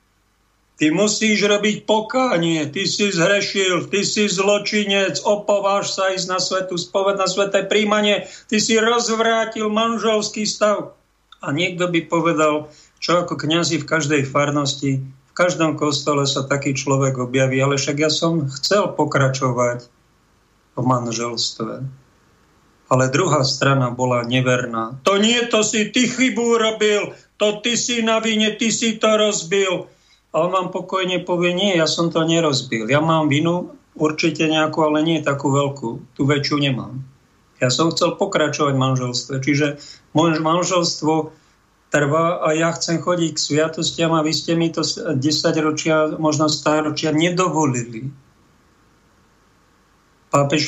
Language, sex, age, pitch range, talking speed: Slovak, male, 50-69, 140-190 Hz, 140 wpm